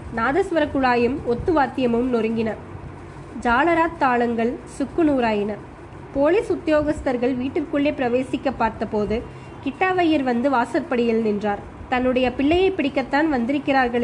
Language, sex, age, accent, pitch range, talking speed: Tamil, female, 20-39, native, 235-290 Hz, 90 wpm